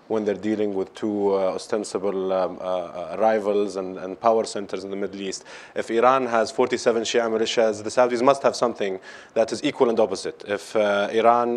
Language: English